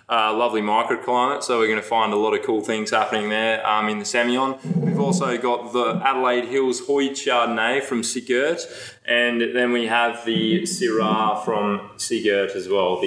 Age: 20-39